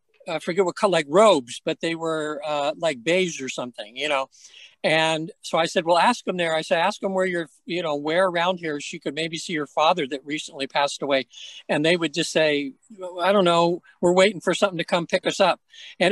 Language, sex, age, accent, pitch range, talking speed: English, male, 60-79, American, 165-200 Hz, 230 wpm